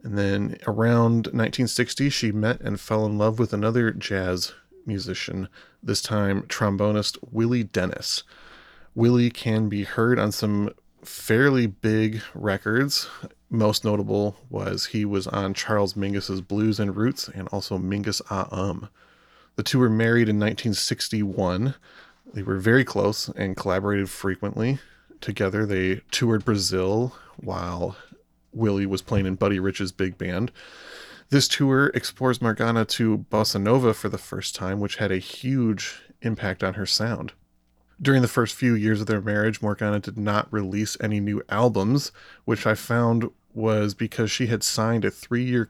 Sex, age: male, 30-49